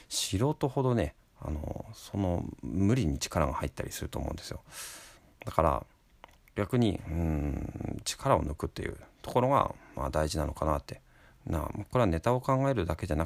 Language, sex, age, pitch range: Japanese, male, 40-59, 80-110 Hz